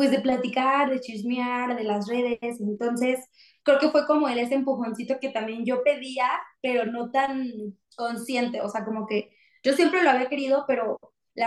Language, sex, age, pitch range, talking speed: Spanish, female, 20-39, 220-270 Hz, 180 wpm